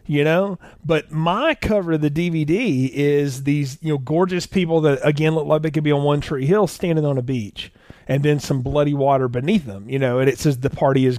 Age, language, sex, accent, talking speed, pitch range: 40-59, English, male, American, 235 wpm, 135-180 Hz